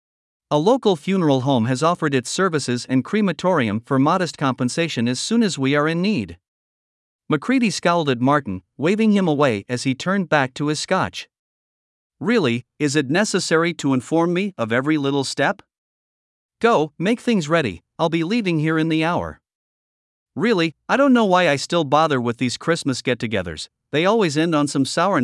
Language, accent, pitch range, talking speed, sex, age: English, American, 130-180 Hz, 175 wpm, male, 50-69